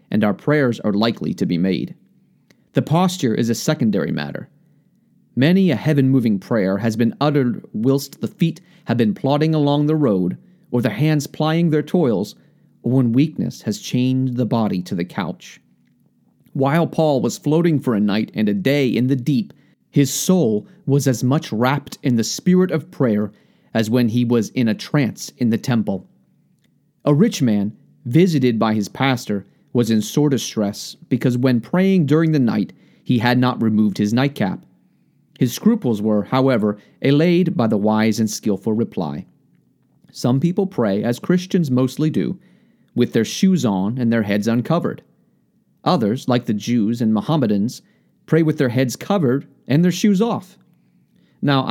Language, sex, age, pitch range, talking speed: English, male, 30-49, 115-175 Hz, 170 wpm